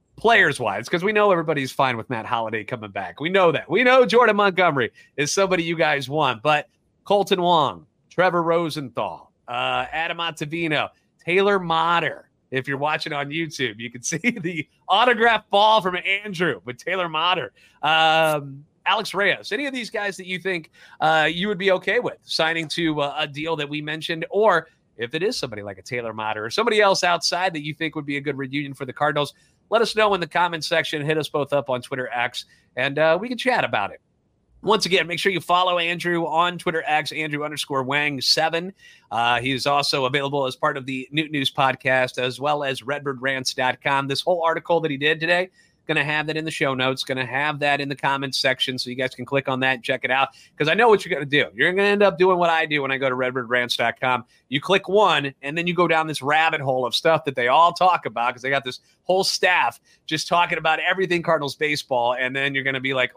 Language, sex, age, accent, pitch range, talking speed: English, male, 30-49, American, 135-175 Hz, 225 wpm